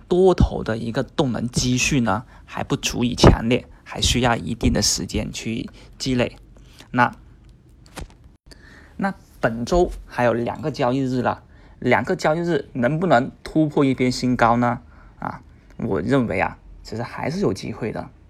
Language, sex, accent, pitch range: Chinese, male, native, 105-135 Hz